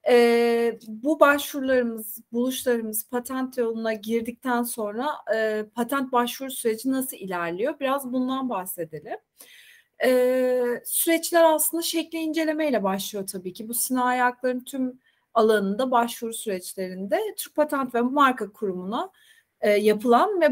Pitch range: 225-300 Hz